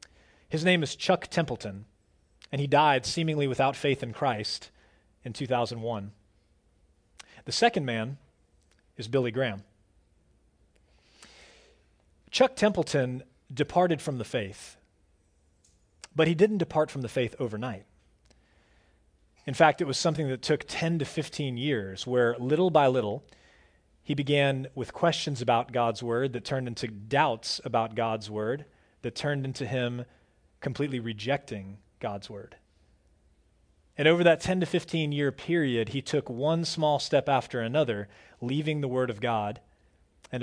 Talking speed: 140 wpm